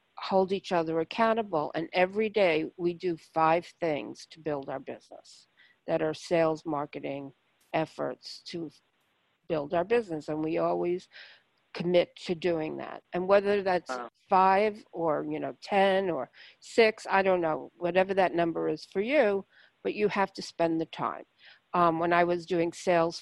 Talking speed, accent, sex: 165 wpm, American, female